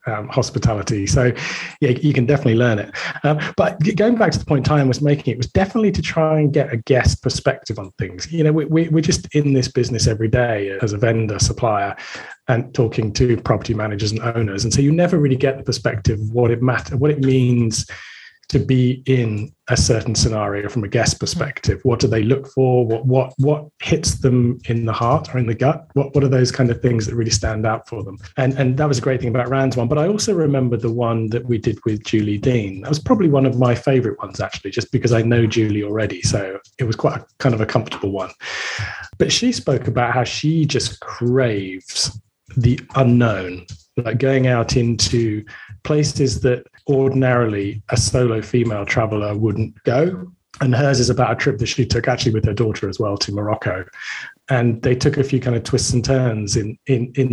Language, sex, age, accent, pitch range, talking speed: English, male, 30-49, British, 110-135 Hz, 215 wpm